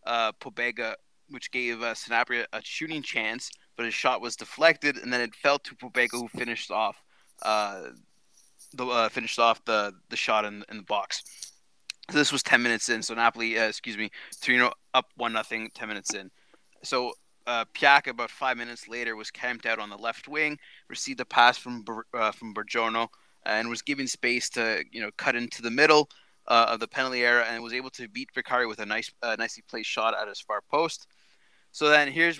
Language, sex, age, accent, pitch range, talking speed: English, male, 20-39, American, 115-135 Hz, 205 wpm